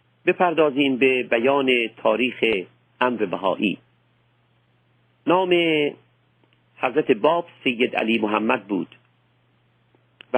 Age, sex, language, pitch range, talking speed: 50-69, male, Persian, 105-140 Hz, 80 wpm